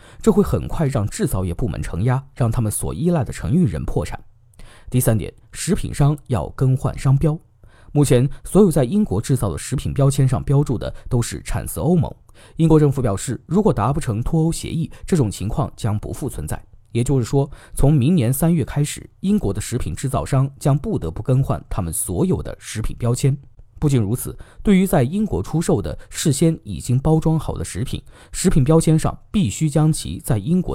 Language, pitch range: Chinese, 105-150 Hz